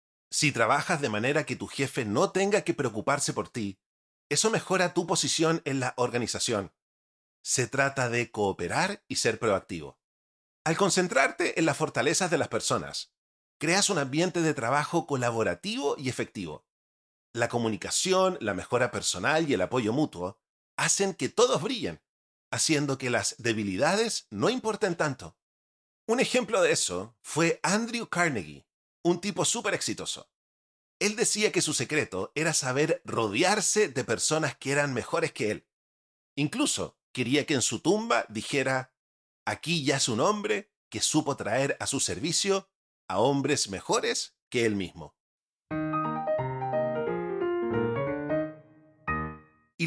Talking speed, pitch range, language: 135 wpm, 105-170 Hz, Spanish